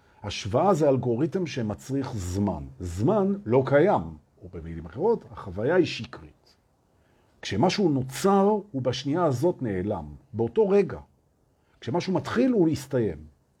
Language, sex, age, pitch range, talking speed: Hebrew, male, 50-69, 100-150 Hz, 110 wpm